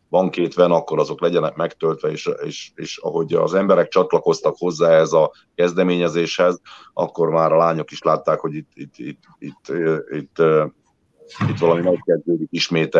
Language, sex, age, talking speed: Hungarian, male, 30-49, 135 wpm